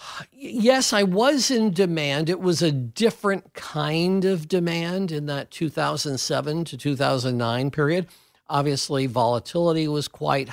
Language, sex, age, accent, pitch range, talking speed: English, male, 50-69, American, 105-150 Hz, 125 wpm